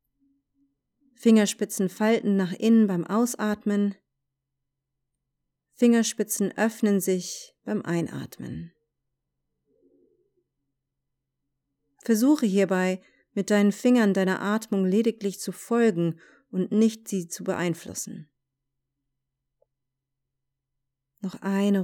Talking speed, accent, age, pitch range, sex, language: 75 wpm, German, 30-49, 135-200 Hz, female, German